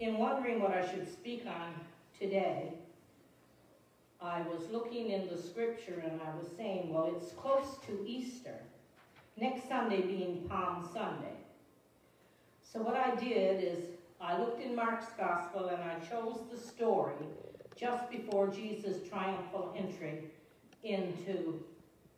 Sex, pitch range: female, 185-240 Hz